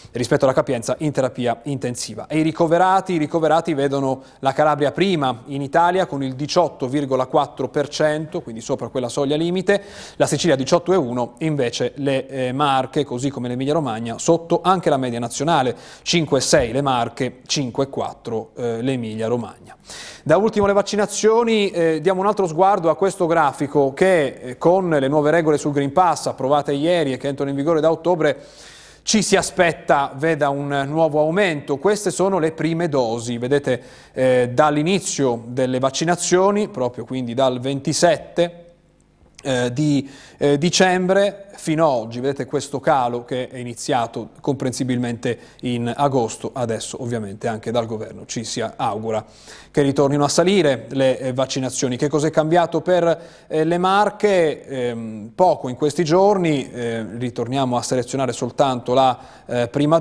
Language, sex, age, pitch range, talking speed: Italian, male, 30-49, 125-165 Hz, 150 wpm